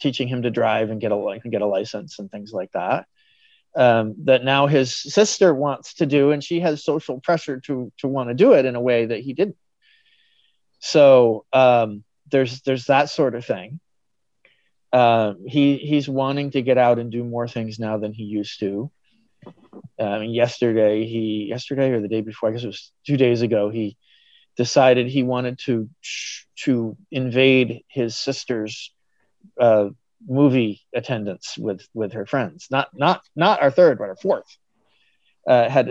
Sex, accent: male, American